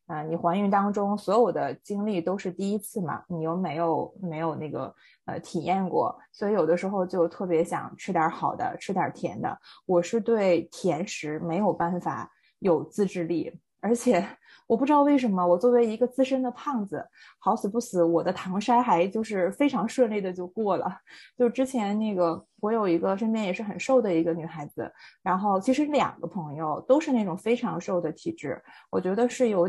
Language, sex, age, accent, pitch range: Chinese, female, 20-39, native, 175-235 Hz